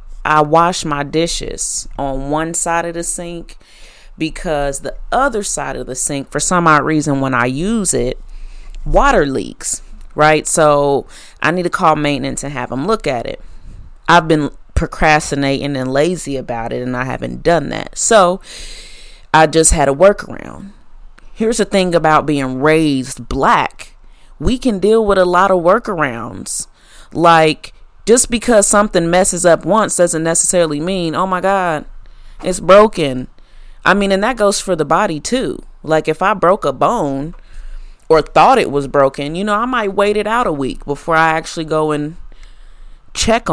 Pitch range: 145-190 Hz